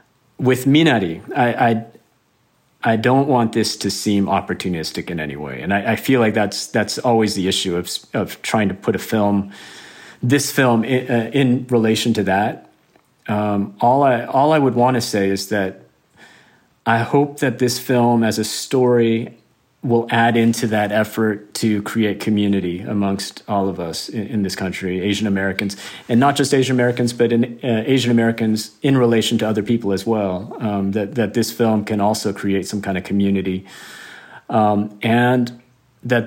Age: 40-59